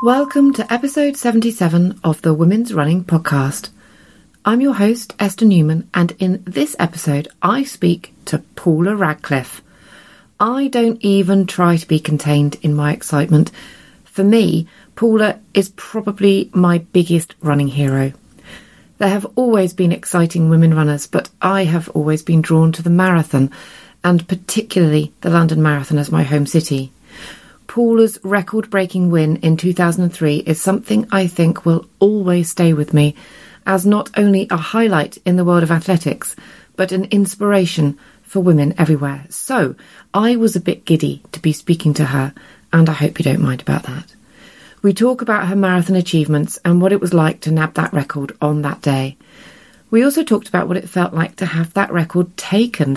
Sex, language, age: female, English, 30-49